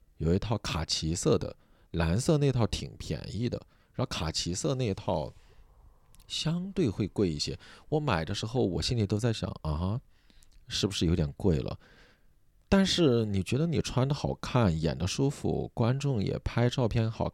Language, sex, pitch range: Chinese, male, 80-115 Hz